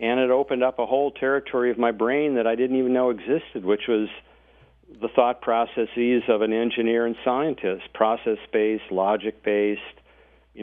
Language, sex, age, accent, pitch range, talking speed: English, male, 50-69, American, 110-125 Hz, 165 wpm